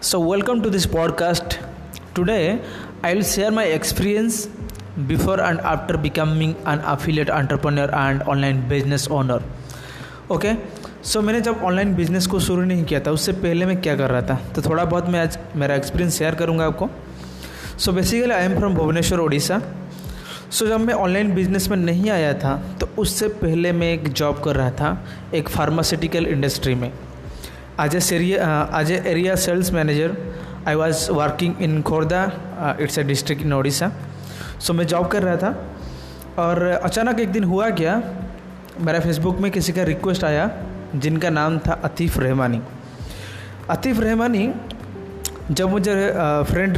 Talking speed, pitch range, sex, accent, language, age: 160 wpm, 145-185 Hz, male, native, Hindi, 20-39